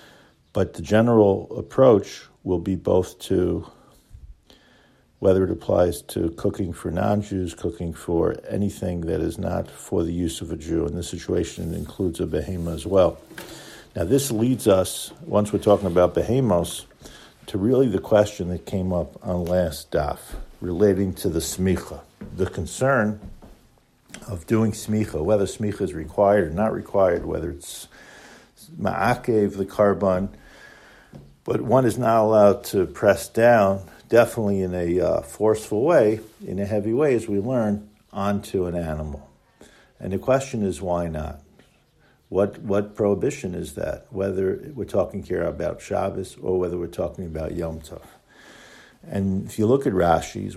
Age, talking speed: 50-69, 155 wpm